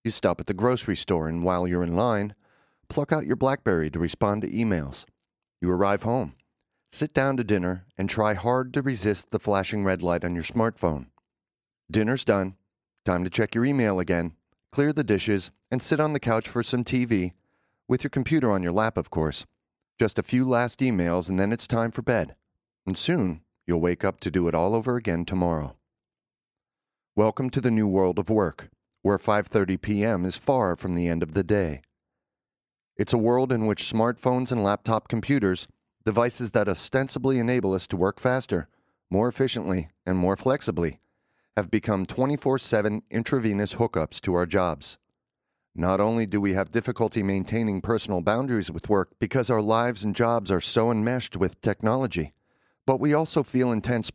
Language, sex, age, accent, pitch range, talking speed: English, male, 40-59, American, 95-120 Hz, 180 wpm